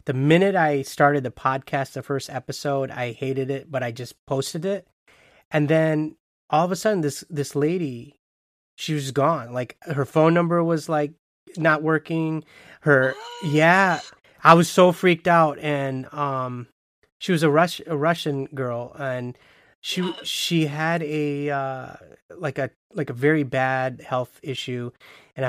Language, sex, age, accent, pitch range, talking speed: English, male, 30-49, American, 130-155 Hz, 160 wpm